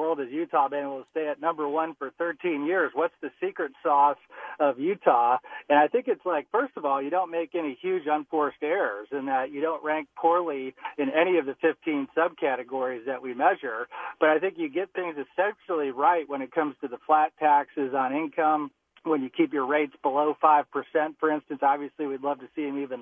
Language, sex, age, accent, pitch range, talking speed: English, male, 40-59, American, 135-160 Hz, 215 wpm